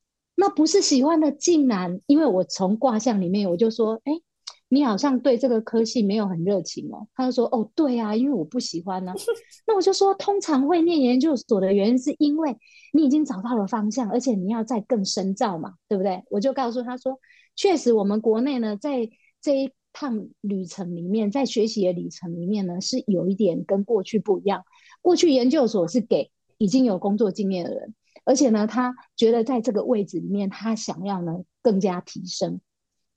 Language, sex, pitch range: Chinese, female, 200-270 Hz